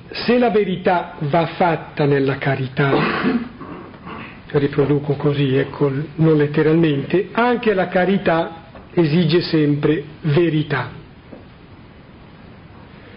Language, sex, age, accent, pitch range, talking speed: Italian, male, 50-69, native, 155-190 Hz, 80 wpm